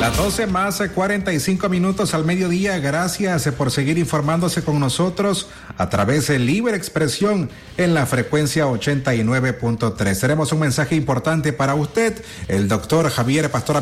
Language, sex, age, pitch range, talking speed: Spanish, male, 40-59, 120-160 Hz, 140 wpm